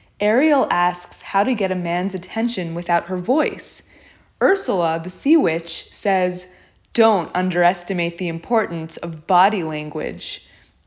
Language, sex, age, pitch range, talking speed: English, female, 20-39, 175-220 Hz, 125 wpm